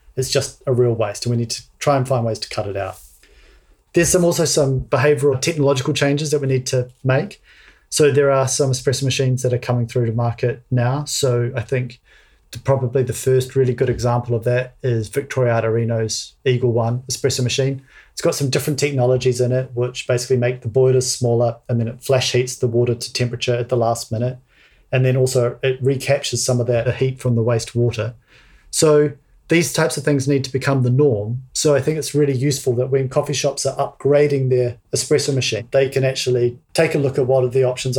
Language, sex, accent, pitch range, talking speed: English, male, Australian, 120-140 Hz, 210 wpm